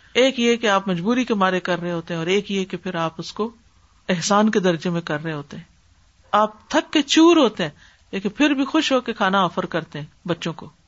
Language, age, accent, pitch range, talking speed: English, 50-69, Indian, 185-255 Hz, 215 wpm